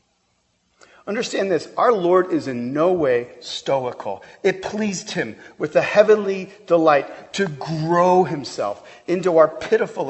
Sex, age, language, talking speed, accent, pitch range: male, 40-59, English, 130 wpm, American, 130-180 Hz